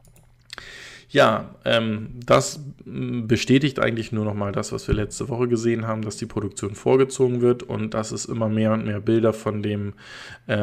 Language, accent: German, German